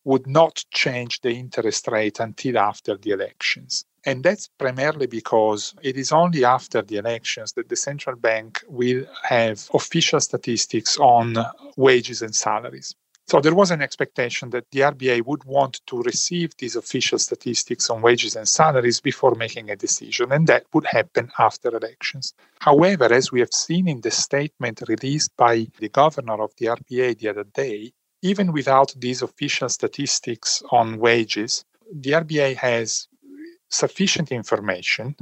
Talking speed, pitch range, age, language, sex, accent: 155 wpm, 120-165 Hz, 40-59, English, male, Italian